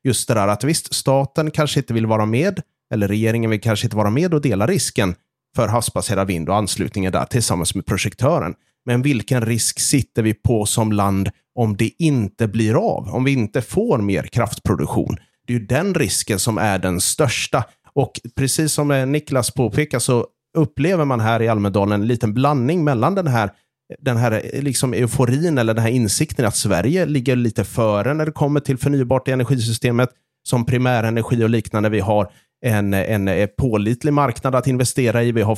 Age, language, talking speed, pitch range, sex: 30-49, Swedish, 185 wpm, 105-135 Hz, male